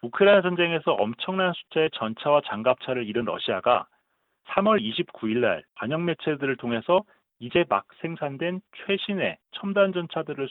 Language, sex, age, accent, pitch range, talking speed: English, male, 40-59, Korean, 125-190 Hz, 115 wpm